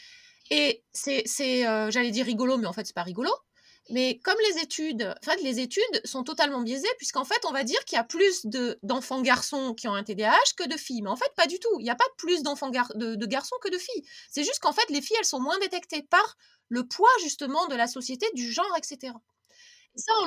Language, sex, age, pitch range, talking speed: French, female, 20-39, 240-340 Hz, 250 wpm